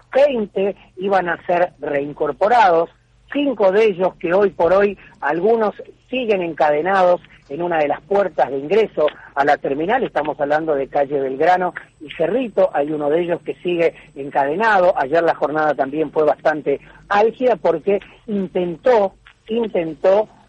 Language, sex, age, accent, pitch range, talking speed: Spanish, female, 40-59, Argentinian, 165-225 Hz, 145 wpm